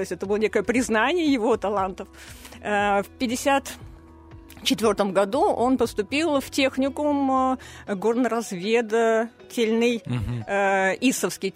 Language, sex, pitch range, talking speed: Russian, female, 195-245 Hz, 100 wpm